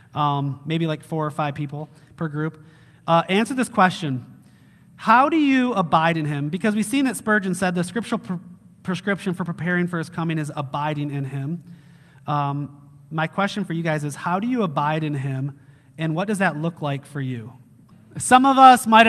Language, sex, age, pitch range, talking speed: English, male, 30-49, 160-215 Hz, 195 wpm